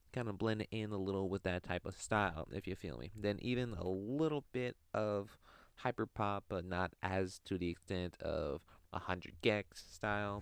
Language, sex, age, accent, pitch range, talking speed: English, male, 20-39, American, 85-95 Hz, 195 wpm